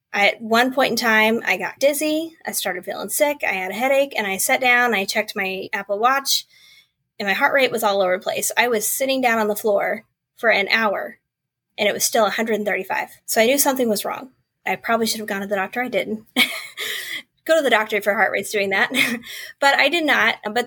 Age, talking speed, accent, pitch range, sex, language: 20-39, 230 wpm, American, 200-235 Hz, female, English